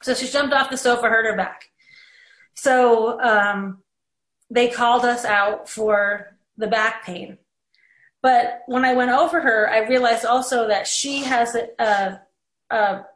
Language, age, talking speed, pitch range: English, 30-49, 150 wpm, 210-260 Hz